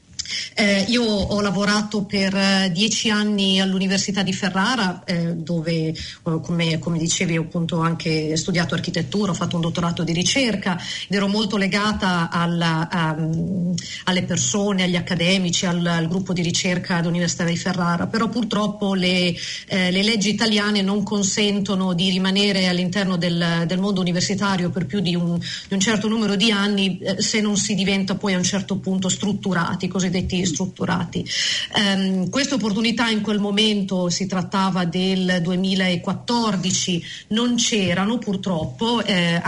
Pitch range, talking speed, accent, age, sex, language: 175-205 Hz, 145 wpm, native, 40-59, female, Italian